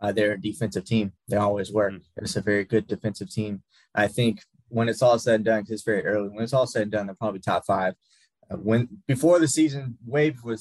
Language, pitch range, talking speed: English, 105-120 Hz, 250 wpm